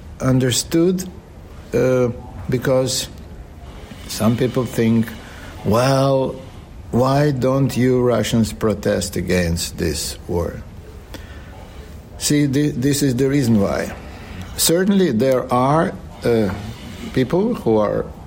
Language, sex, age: English, male, 60-79